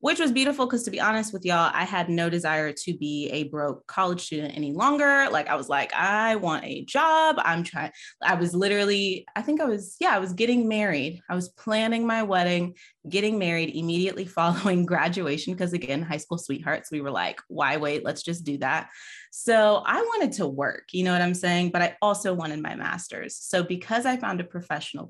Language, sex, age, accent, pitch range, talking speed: English, female, 20-39, American, 155-205 Hz, 215 wpm